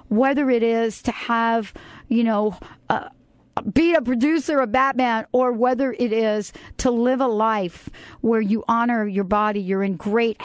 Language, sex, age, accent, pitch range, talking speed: English, female, 50-69, American, 200-240 Hz, 165 wpm